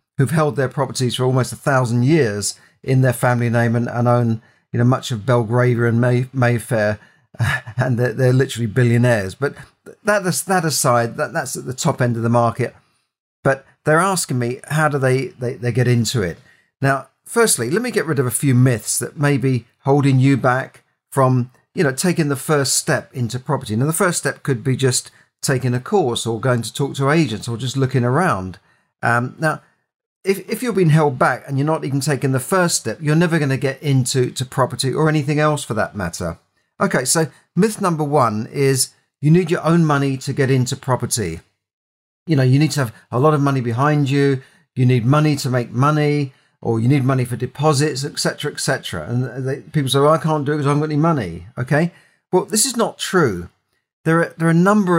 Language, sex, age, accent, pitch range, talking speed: English, male, 40-59, British, 125-150 Hz, 210 wpm